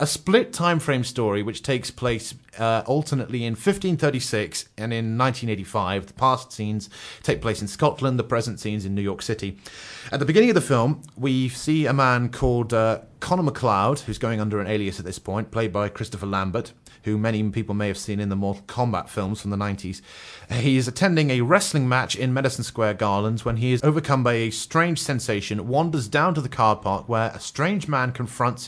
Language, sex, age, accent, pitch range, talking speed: English, male, 30-49, British, 110-140 Hz, 205 wpm